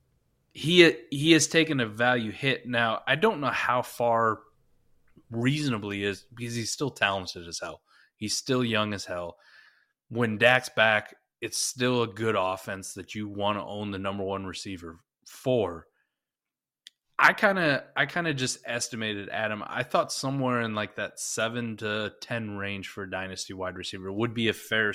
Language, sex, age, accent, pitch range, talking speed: English, male, 20-39, American, 100-125 Hz, 175 wpm